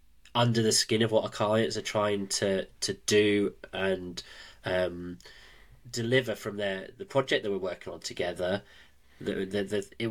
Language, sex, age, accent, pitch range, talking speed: English, male, 20-39, British, 100-125 Hz, 165 wpm